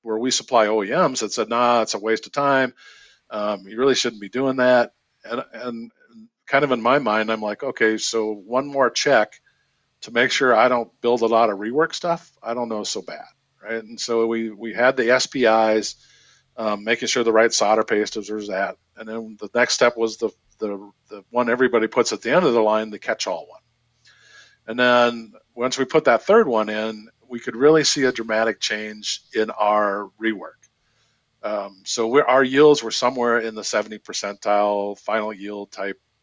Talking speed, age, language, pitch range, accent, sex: 200 wpm, 50-69, English, 110-130 Hz, American, male